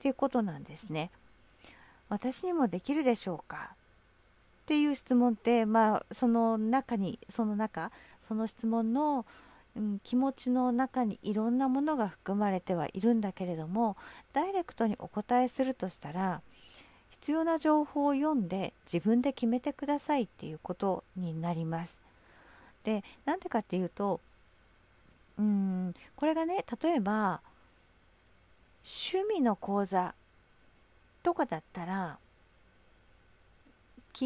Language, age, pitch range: Japanese, 50-69, 175-260 Hz